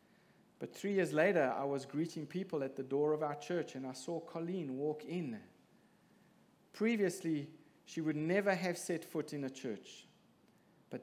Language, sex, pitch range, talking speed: English, male, 130-165 Hz, 170 wpm